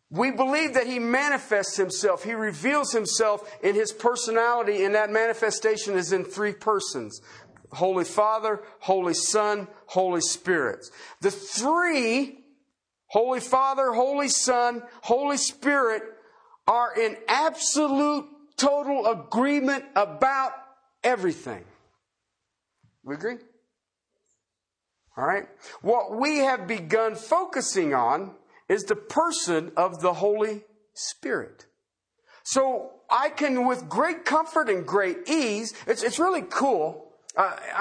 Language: English